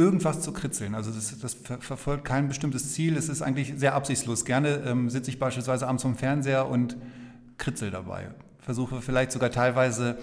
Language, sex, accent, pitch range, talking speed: German, male, German, 125-145 Hz, 175 wpm